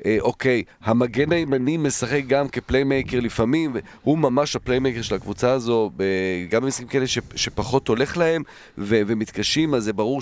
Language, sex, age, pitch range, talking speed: Hebrew, male, 40-59, 100-125 Hz, 140 wpm